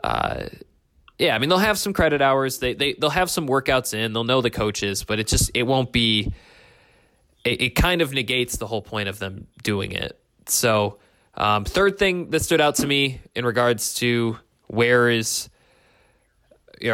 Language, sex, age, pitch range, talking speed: English, male, 20-39, 110-135 Hz, 190 wpm